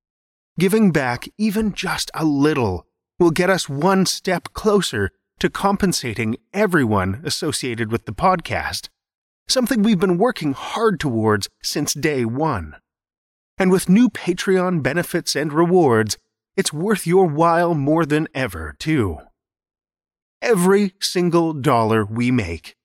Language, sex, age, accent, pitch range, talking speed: English, male, 30-49, American, 110-180 Hz, 125 wpm